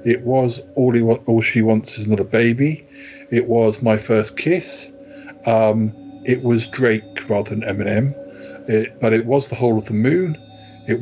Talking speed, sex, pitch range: 180 wpm, male, 110-140 Hz